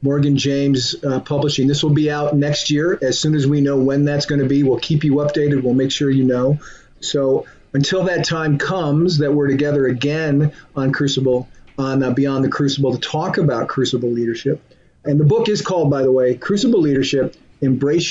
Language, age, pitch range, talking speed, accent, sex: English, 40-59, 130-150 Hz, 200 wpm, American, male